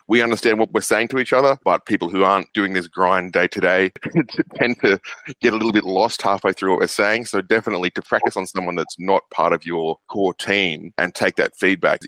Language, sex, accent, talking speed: English, male, Australian, 225 wpm